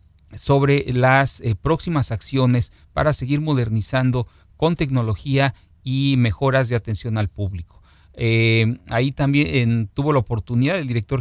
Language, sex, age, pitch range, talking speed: Spanish, male, 40-59, 115-145 Hz, 135 wpm